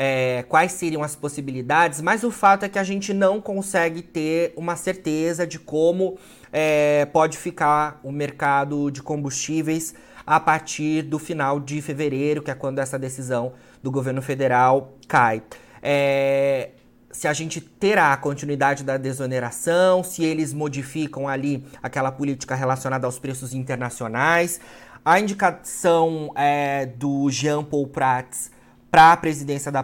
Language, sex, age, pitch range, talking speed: Portuguese, male, 30-49, 130-160 Hz, 135 wpm